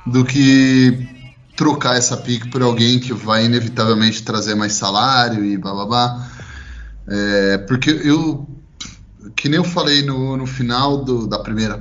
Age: 20-39